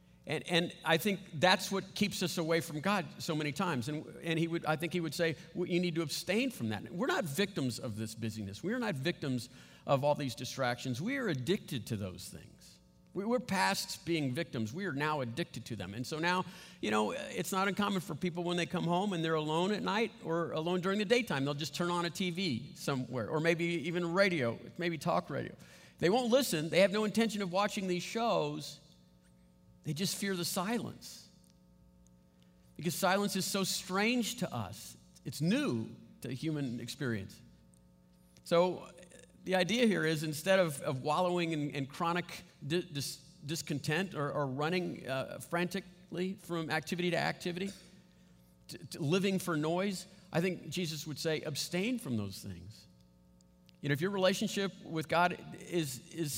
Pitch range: 130-185 Hz